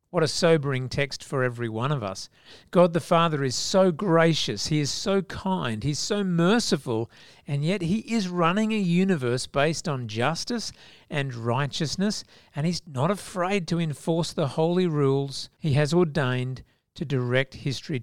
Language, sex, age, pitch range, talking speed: English, male, 50-69, 125-165 Hz, 165 wpm